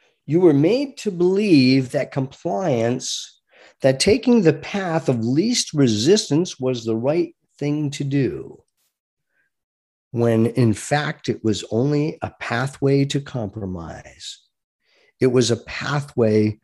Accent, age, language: American, 50-69, English